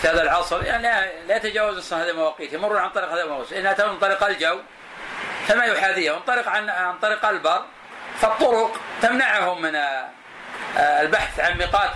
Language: Arabic